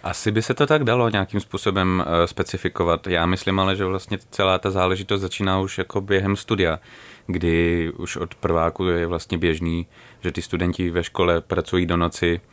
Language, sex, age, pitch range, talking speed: Czech, male, 30-49, 85-100 Hz, 180 wpm